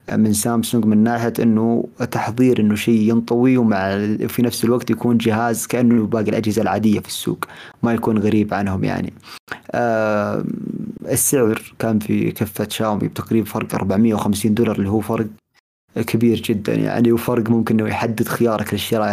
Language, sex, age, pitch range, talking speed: Arabic, male, 30-49, 105-120 Hz, 150 wpm